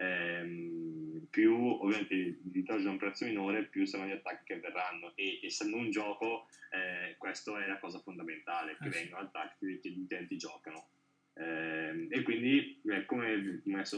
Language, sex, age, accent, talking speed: Italian, male, 10-29, native, 155 wpm